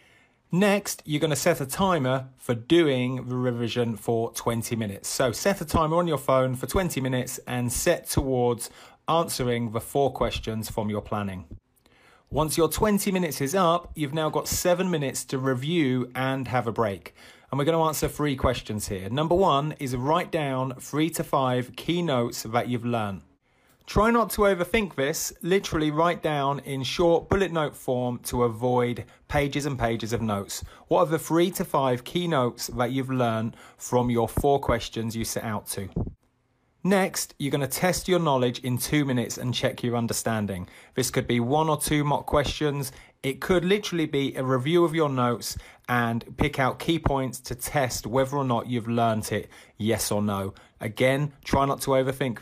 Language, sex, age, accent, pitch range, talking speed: English, male, 30-49, British, 120-155 Hz, 185 wpm